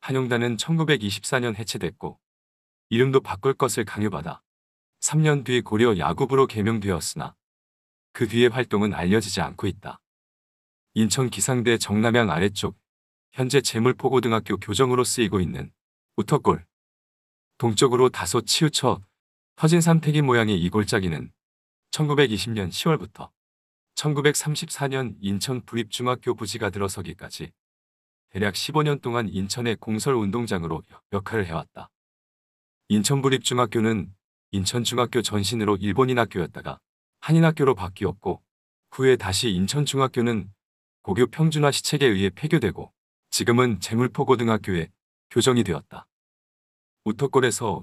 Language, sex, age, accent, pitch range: Korean, male, 40-59, native, 100-130 Hz